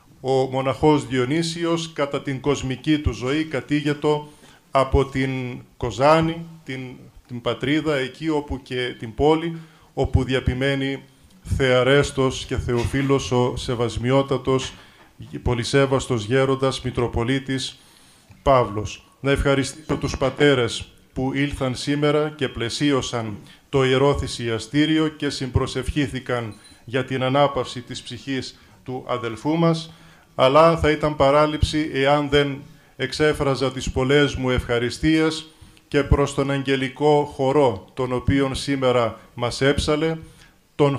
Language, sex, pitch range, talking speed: Greek, male, 125-150 Hz, 110 wpm